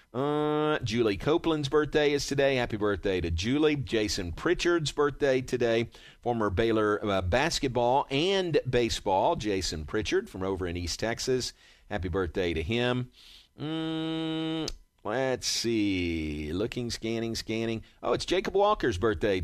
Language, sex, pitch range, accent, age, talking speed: English, male, 100-130 Hz, American, 40-59, 130 wpm